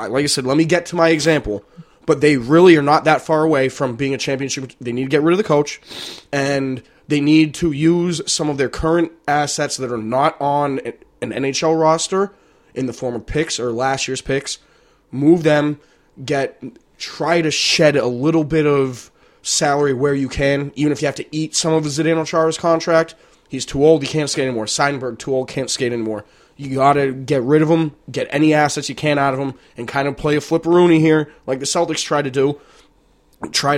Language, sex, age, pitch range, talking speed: English, male, 20-39, 130-160 Hz, 215 wpm